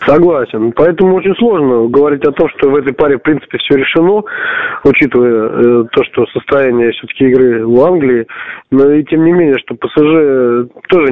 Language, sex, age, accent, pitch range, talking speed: Russian, male, 20-39, native, 125-160 Hz, 175 wpm